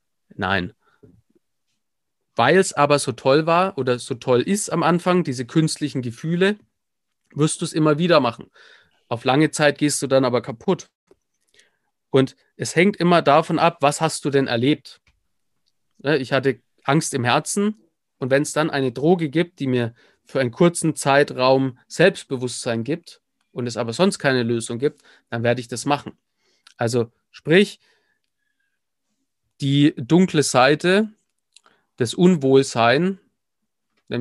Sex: male